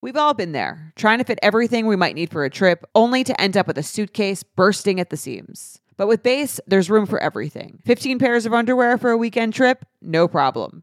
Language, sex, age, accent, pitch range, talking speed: English, female, 30-49, American, 155-215 Hz, 235 wpm